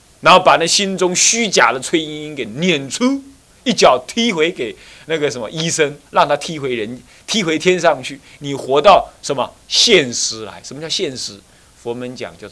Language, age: Chinese, 30-49